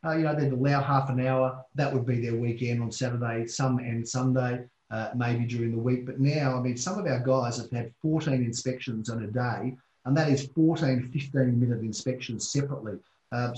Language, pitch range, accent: English, 115-135 Hz, Australian